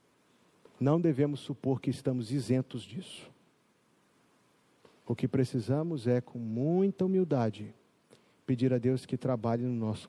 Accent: Brazilian